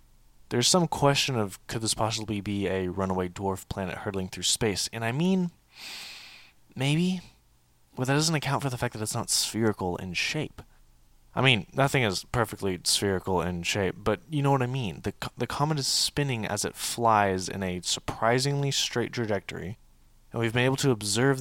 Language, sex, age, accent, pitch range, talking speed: English, male, 20-39, American, 90-120 Hz, 180 wpm